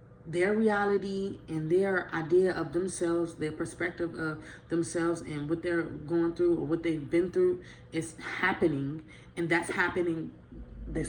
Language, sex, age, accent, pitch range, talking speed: English, female, 20-39, American, 155-190 Hz, 145 wpm